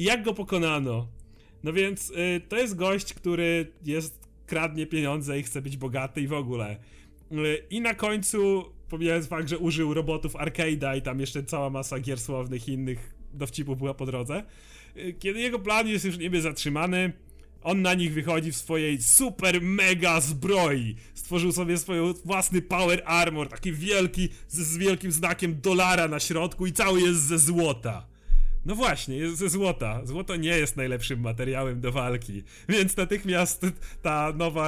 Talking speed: 170 wpm